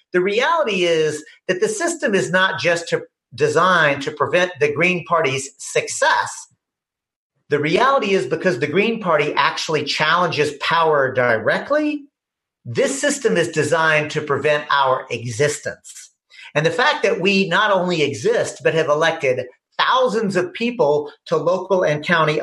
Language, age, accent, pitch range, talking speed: English, 50-69, American, 155-260 Hz, 140 wpm